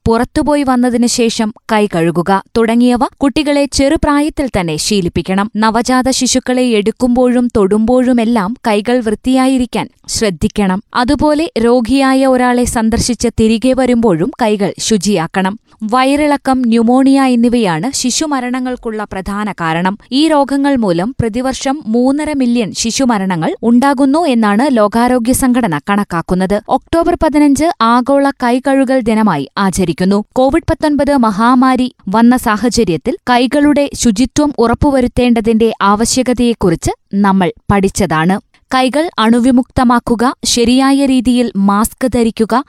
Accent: native